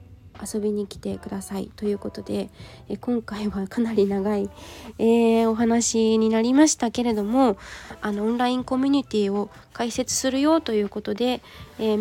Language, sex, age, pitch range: Japanese, female, 20-39, 200-230 Hz